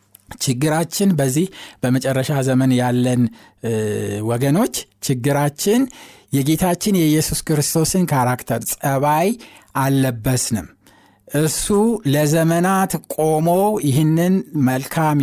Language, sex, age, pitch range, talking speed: Amharic, male, 60-79, 120-155 Hz, 70 wpm